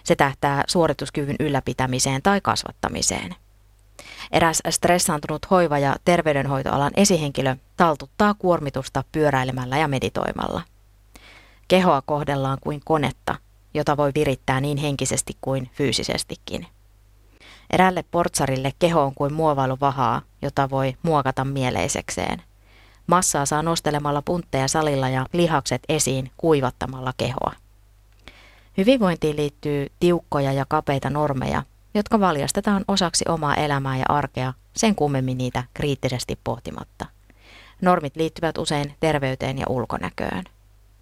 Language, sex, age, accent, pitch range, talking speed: Finnish, female, 30-49, native, 125-160 Hz, 105 wpm